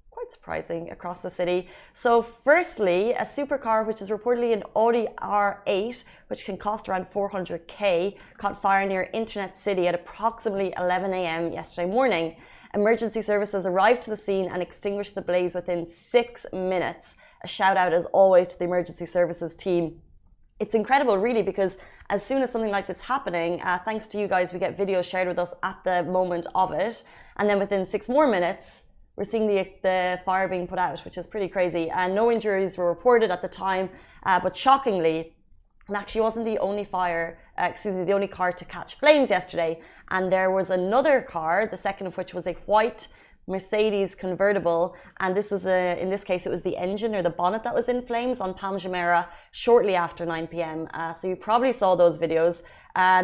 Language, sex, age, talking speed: Arabic, female, 20-39, 195 wpm